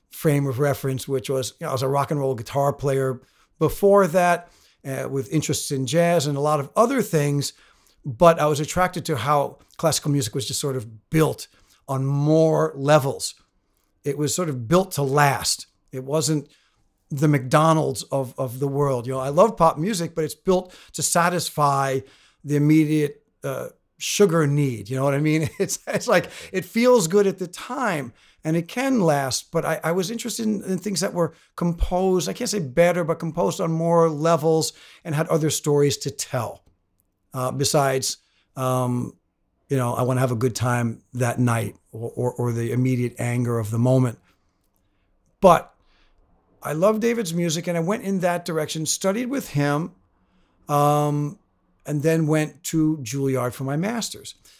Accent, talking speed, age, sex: American, 180 wpm, 50-69, male